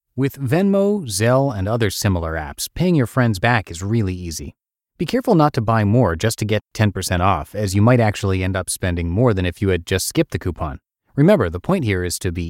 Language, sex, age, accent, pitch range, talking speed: English, male, 30-49, American, 95-130 Hz, 230 wpm